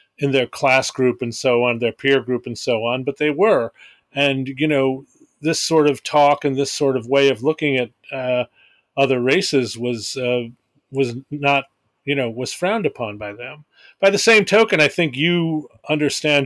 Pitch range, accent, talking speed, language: 125-150 Hz, American, 195 wpm, English